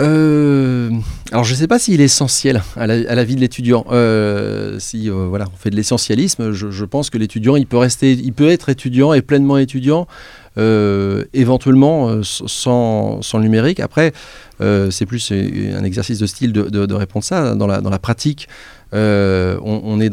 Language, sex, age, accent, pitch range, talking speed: French, male, 30-49, French, 105-130 Hz, 200 wpm